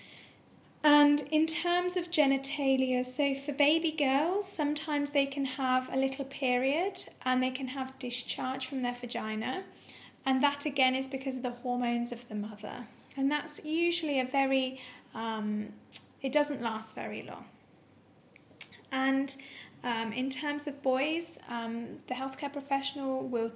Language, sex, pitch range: Vietnamese, female, 240-285 Hz